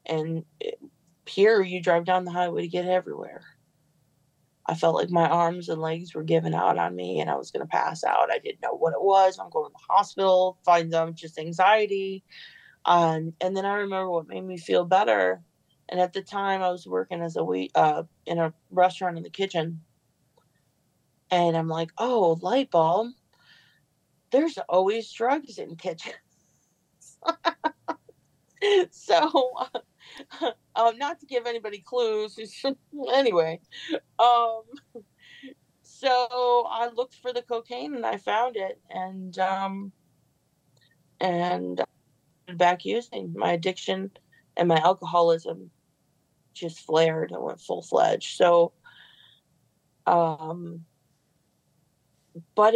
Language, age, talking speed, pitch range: English, 30-49, 140 wpm, 160-215 Hz